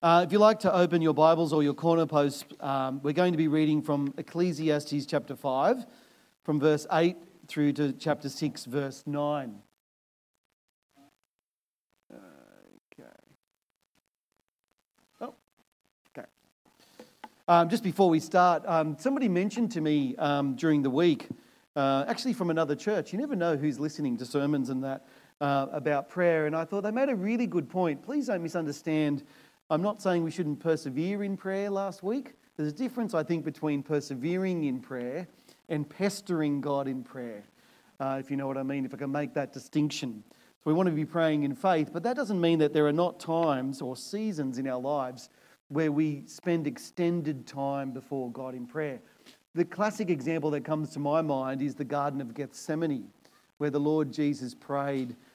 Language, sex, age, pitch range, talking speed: English, male, 40-59, 140-170 Hz, 175 wpm